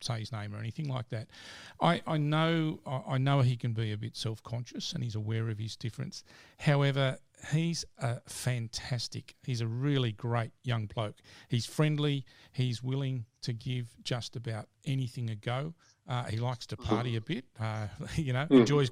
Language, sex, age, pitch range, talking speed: English, male, 50-69, 115-140 Hz, 180 wpm